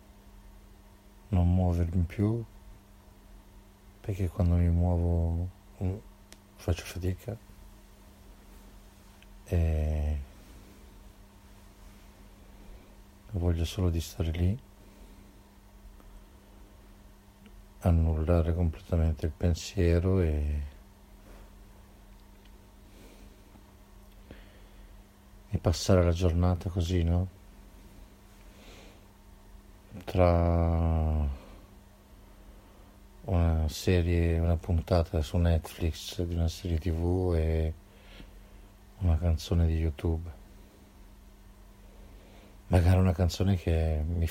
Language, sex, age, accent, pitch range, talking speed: Italian, male, 60-79, native, 85-100 Hz, 65 wpm